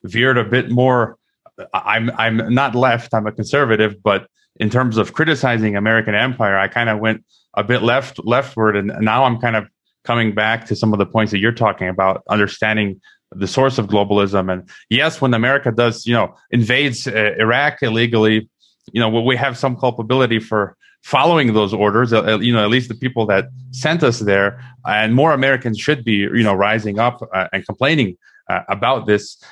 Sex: male